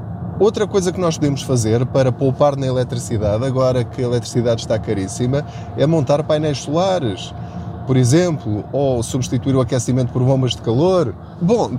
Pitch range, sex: 110-145 Hz, male